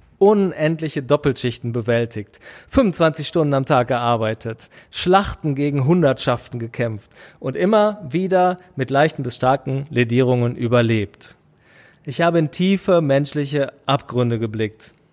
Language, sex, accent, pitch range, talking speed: German, male, German, 120-160 Hz, 110 wpm